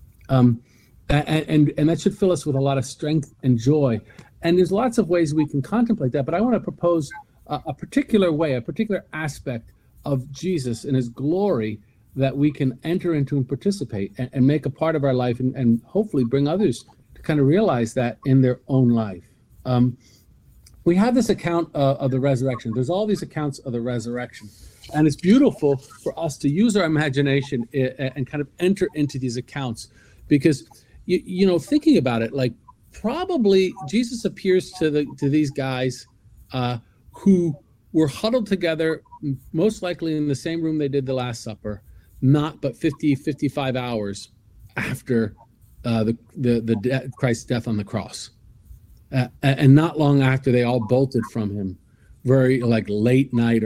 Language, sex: English, male